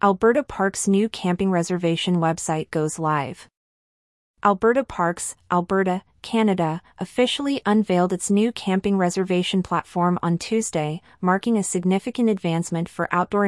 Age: 30-49